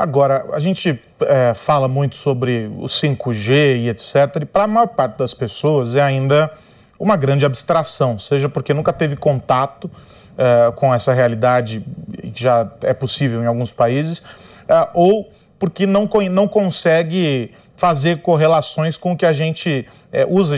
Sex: male